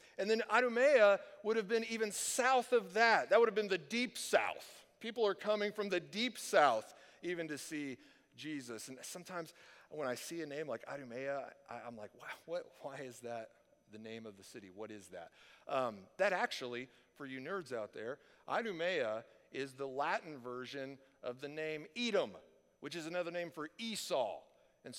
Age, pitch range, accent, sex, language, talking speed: 50-69, 130-205 Hz, American, male, English, 180 wpm